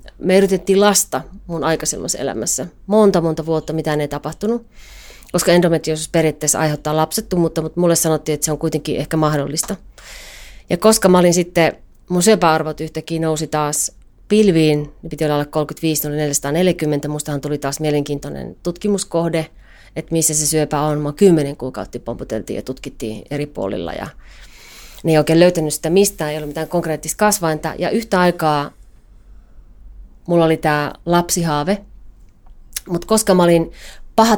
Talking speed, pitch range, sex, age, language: 145 wpm, 150-180 Hz, female, 30-49, Finnish